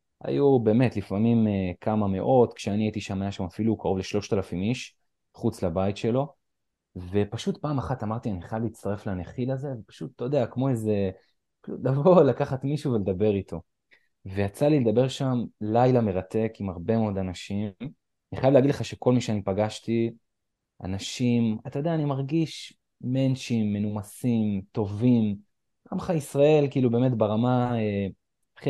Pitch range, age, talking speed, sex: 100-125 Hz, 20-39, 135 wpm, male